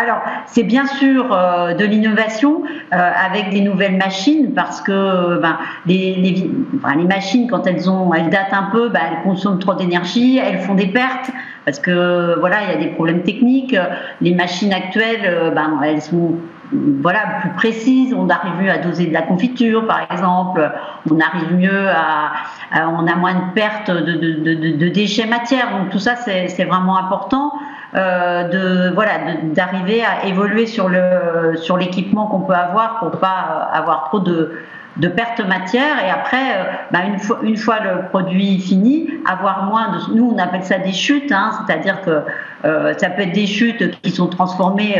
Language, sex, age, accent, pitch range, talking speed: French, female, 50-69, French, 175-225 Hz, 190 wpm